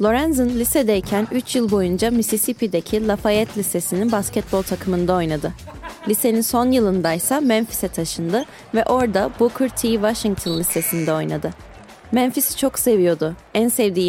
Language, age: Turkish, 30-49